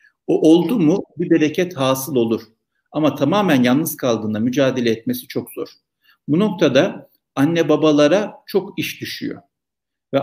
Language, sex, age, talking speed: Turkish, male, 50-69, 135 wpm